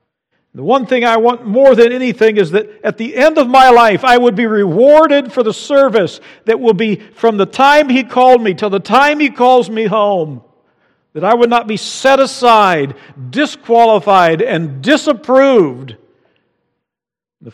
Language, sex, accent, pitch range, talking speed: English, male, American, 140-220 Hz, 170 wpm